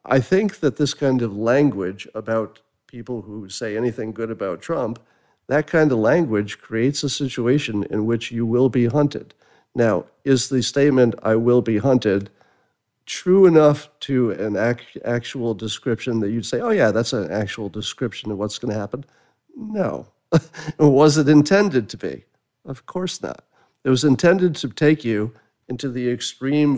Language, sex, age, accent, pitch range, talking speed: English, male, 50-69, American, 115-145 Hz, 165 wpm